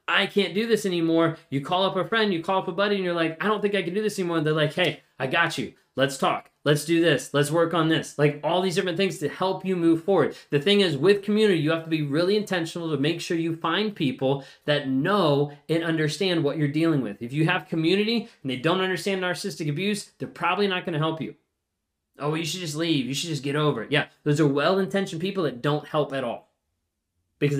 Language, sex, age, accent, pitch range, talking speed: English, male, 20-39, American, 140-185 Hz, 250 wpm